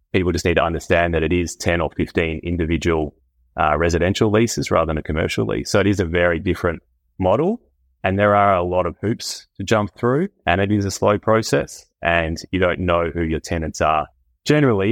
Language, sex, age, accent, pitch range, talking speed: English, male, 30-49, Australian, 80-95 Hz, 210 wpm